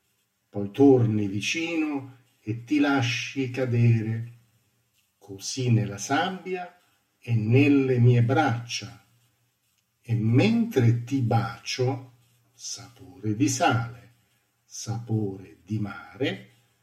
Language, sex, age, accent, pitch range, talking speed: Italian, male, 50-69, native, 105-125 Hz, 85 wpm